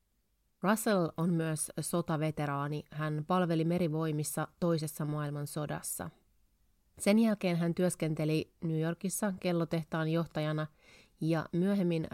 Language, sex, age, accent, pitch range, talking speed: Finnish, female, 30-49, native, 150-175 Hz, 95 wpm